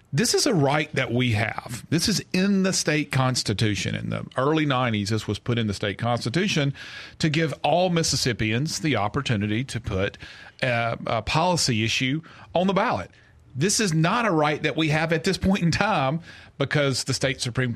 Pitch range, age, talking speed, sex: 110-155 Hz, 40-59, 190 wpm, male